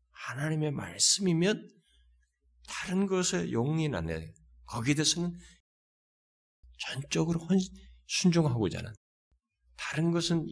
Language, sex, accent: Korean, male, native